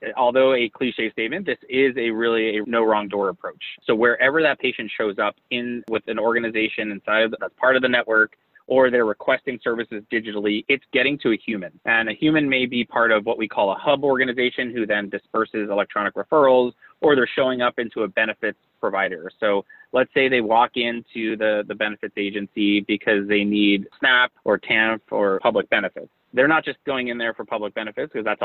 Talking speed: 205 wpm